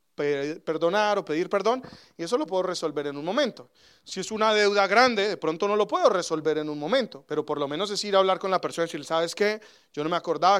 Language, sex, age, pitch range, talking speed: English, male, 30-49, 155-215 Hz, 255 wpm